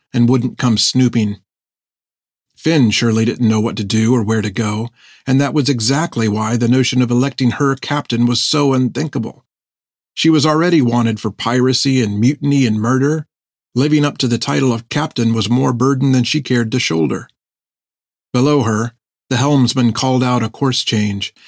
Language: English